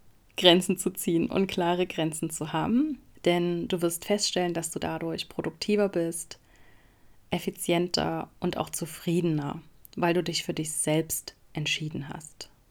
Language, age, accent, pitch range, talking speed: German, 30-49, German, 160-190 Hz, 135 wpm